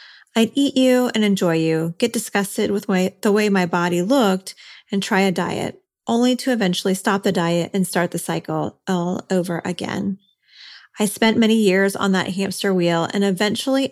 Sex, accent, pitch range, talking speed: female, American, 185-220 Hz, 175 wpm